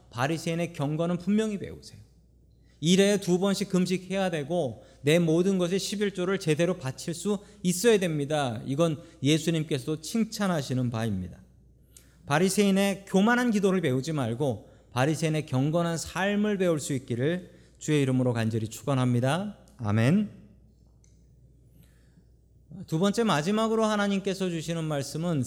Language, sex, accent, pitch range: Korean, male, native, 125-180 Hz